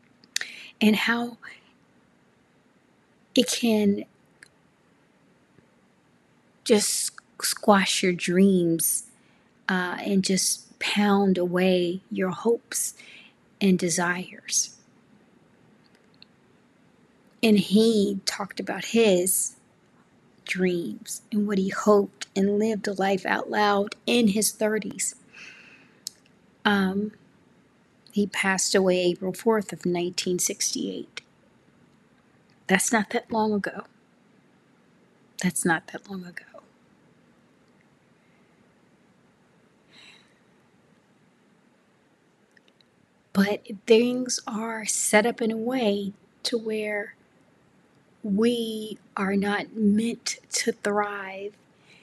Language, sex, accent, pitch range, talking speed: English, female, American, 195-225 Hz, 80 wpm